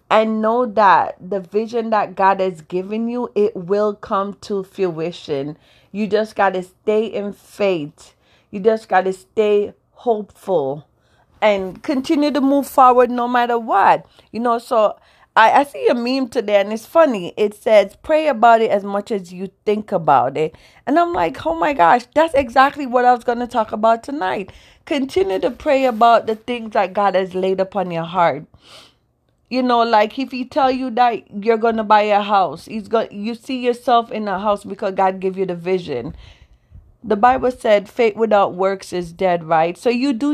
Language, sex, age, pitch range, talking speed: English, female, 30-49, 195-245 Hz, 190 wpm